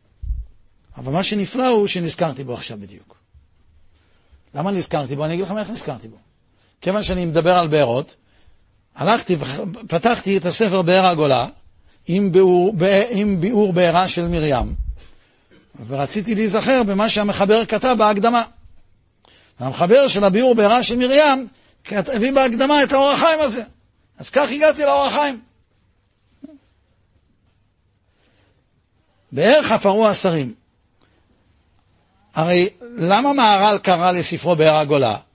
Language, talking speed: Hebrew, 110 wpm